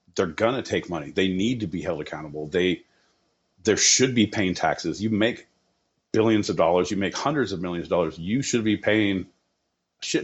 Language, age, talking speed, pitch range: English, 40-59, 205 wpm, 95-125 Hz